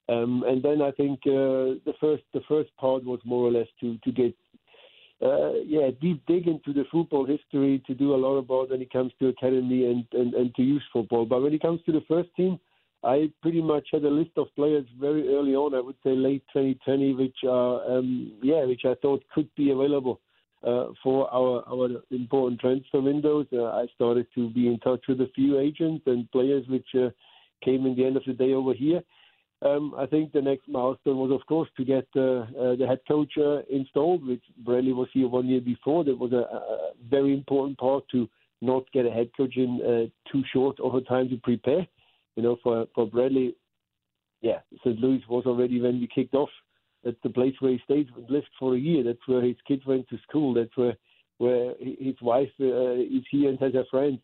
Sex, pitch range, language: male, 125-140 Hz, English